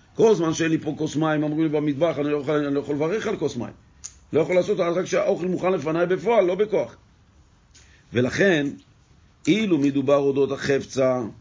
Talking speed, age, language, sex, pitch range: 190 wpm, 50-69, Hebrew, male, 130-175 Hz